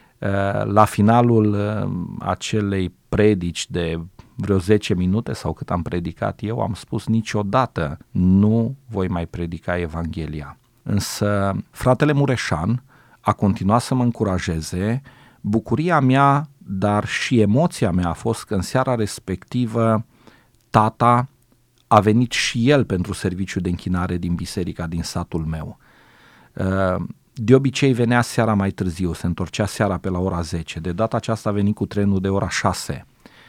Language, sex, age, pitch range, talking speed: Romanian, male, 40-59, 95-120 Hz, 140 wpm